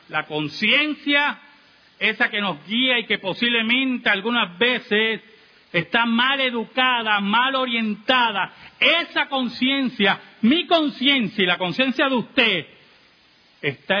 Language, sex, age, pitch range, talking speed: Spanish, male, 50-69, 185-255 Hz, 110 wpm